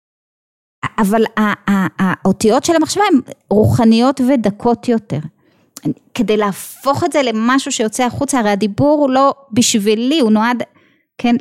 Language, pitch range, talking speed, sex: Hebrew, 195-270 Hz, 120 wpm, female